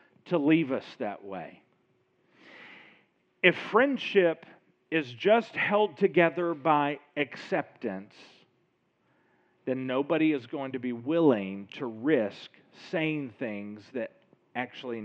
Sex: male